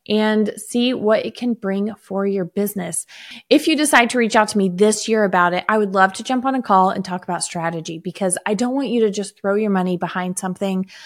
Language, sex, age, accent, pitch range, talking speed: English, female, 20-39, American, 185-235 Hz, 245 wpm